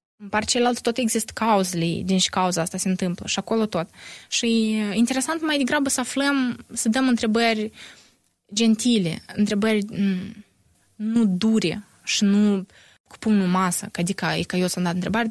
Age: 20-39